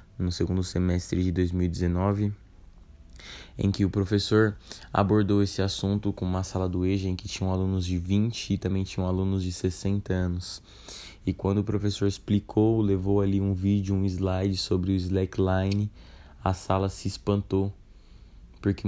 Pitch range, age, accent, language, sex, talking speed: 90-100 Hz, 20-39, Brazilian, Portuguese, male, 155 wpm